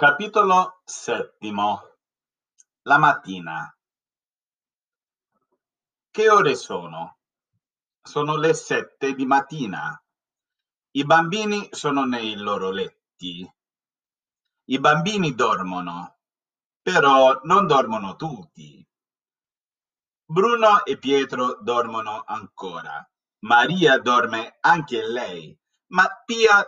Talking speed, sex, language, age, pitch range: 80 wpm, male, Italian, 50-69, 125-215 Hz